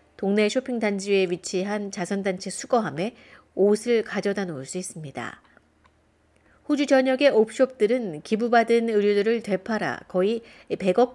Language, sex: Korean, female